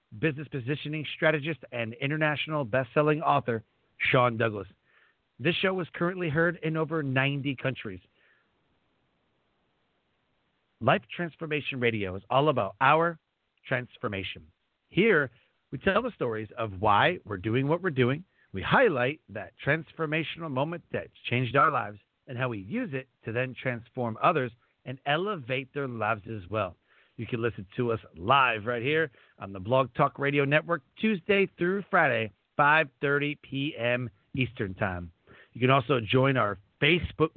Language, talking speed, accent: English, 145 wpm, American